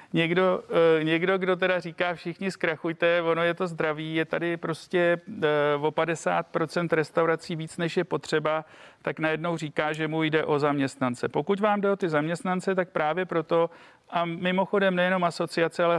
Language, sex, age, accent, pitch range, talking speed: Czech, male, 40-59, native, 150-165 Hz, 160 wpm